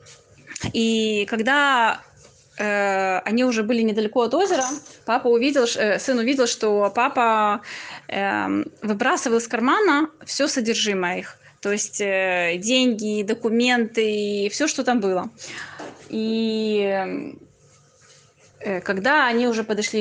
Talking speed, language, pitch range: 115 wpm, Russian, 210-265 Hz